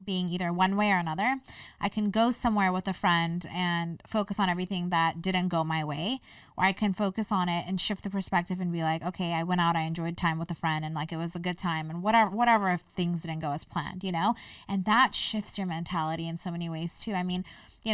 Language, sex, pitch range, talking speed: English, female, 175-210 Hz, 255 wpm